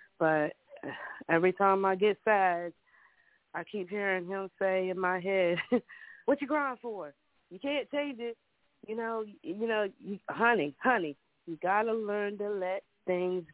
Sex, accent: female, American